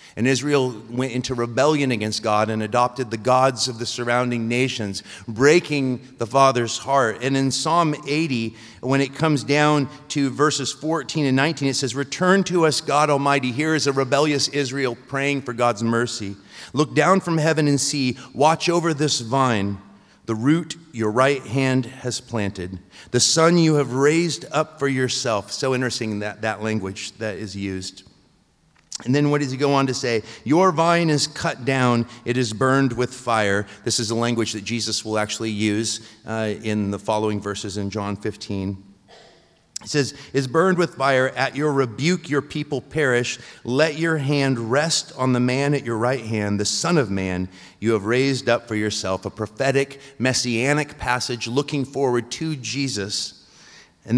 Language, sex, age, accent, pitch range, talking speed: English, male, 40-59, American, 110-140 Hz, 175 wpm